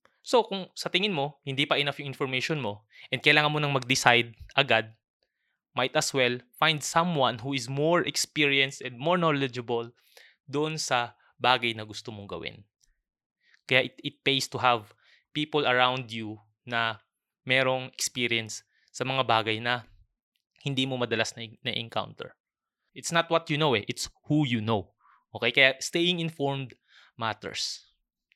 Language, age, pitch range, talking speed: Filipino, 20-39, 120-155 Hz, 150 wpm